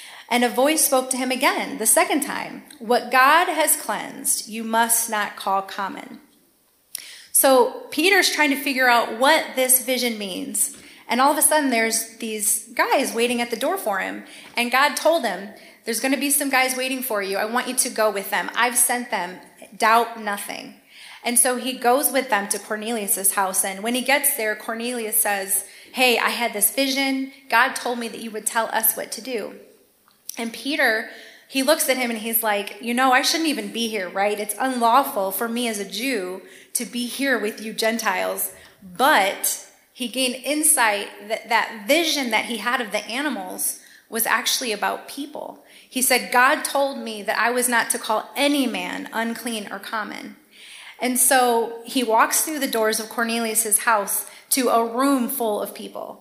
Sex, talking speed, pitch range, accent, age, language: female, 190 wpm, 220-270 Hz, American, 30-49, English